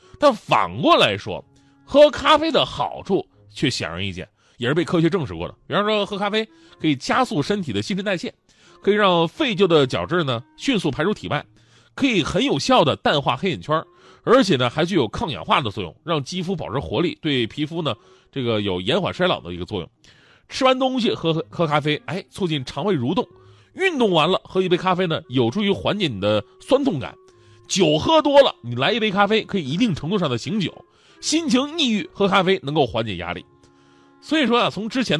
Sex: male